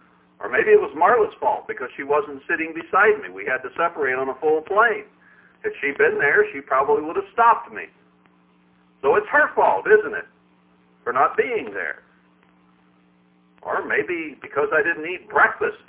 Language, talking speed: English, 180 wpm